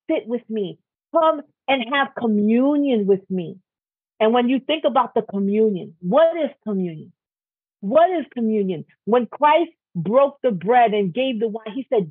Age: 40-59